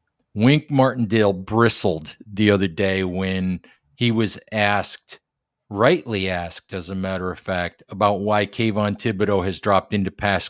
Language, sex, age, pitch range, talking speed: English, male, 50-69, 100-115 Hz, 145 wpm